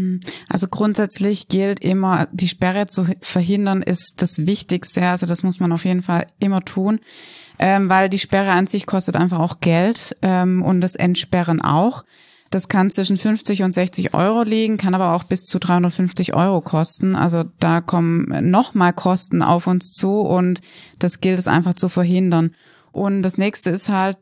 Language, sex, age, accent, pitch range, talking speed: German, female, 20-39, German, 170-190 Hz, 170 wpm